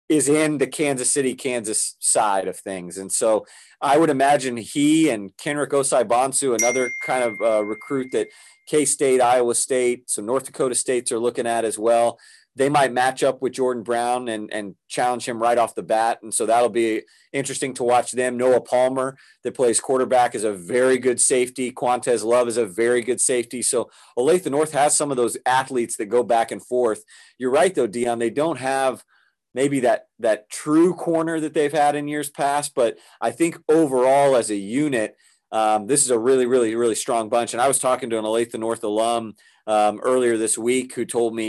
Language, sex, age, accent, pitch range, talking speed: English, male, 30-49, American, 115-135 Hz, 200 wpm